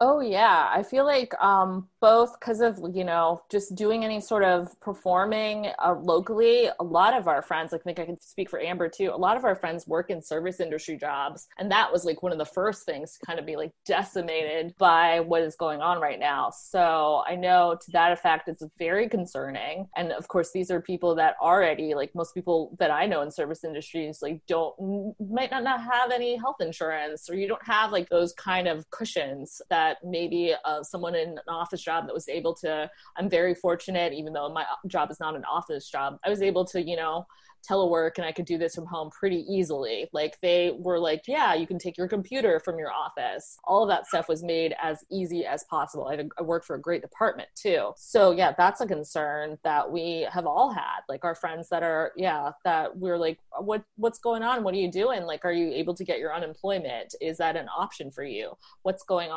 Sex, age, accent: female, 30-49, American